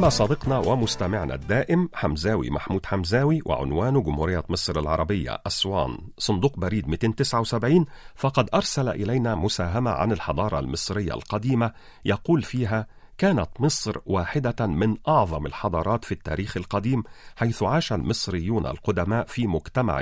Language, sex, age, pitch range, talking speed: Arabic, male, 40-59, 95-130 Hz, 120 wpm